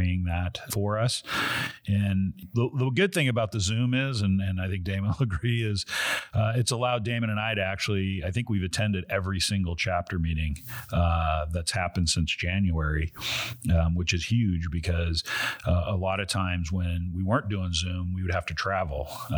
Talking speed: 190 wpm